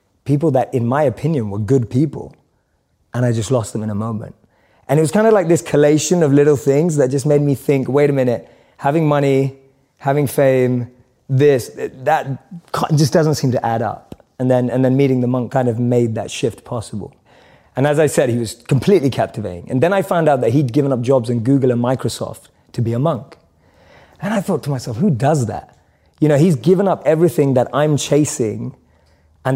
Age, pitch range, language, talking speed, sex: 20-39, 120-145 Hz, English, 210 wpm, male